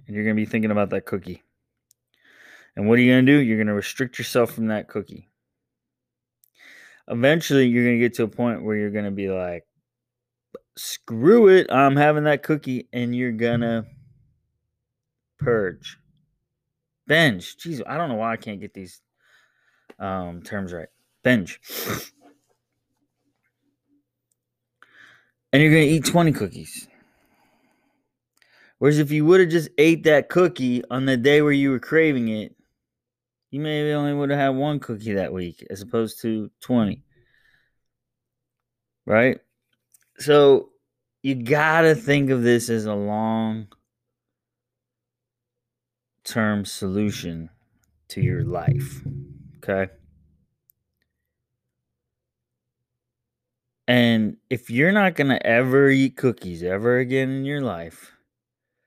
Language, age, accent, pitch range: English, 20-39, American, 110-140 Hz